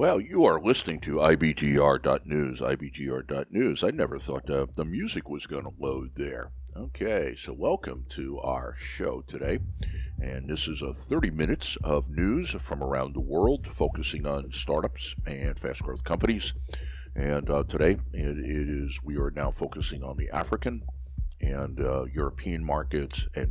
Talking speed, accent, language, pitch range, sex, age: 155 wpm, American, English, 65-75 Hz, male, 60-79